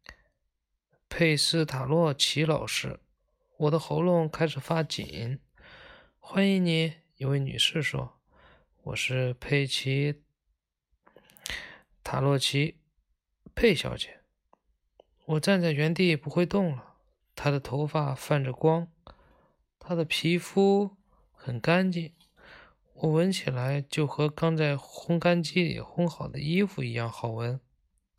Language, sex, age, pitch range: Chinese, male, 20-39, 125-165 Hz